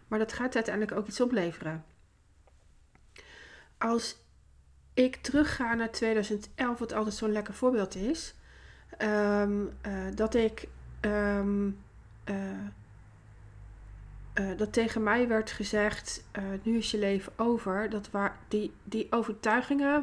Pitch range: 180-225 Hz